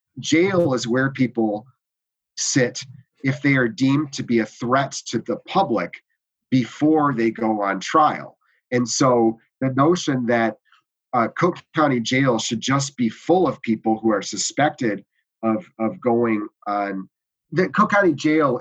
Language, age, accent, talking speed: English, 30-49, American, 150 wpm